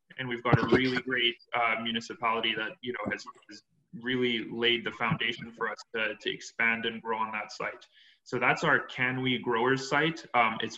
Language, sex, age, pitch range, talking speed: English, male, 20-39, 115-125 Hz, 200 wpm